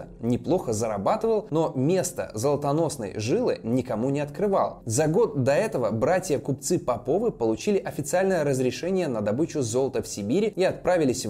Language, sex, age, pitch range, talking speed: Russian, male, 20-39, 120-180 Hz, 135 wpm